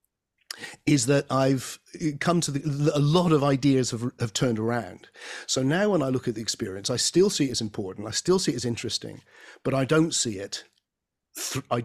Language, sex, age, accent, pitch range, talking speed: English, male, 40-59, British, 120-145 Hz, 210 wpm